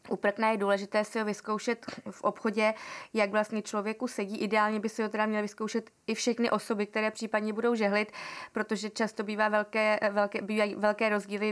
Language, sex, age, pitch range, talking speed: Czech, female, 20-39, 205-225 Hz, 180 wpm